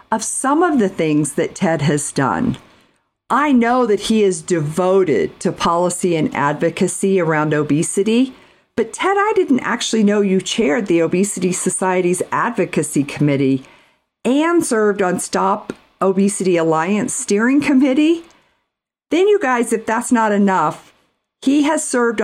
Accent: American